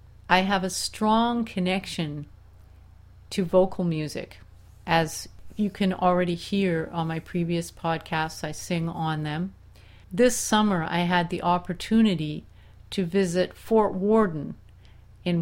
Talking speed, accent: 125 wpm, American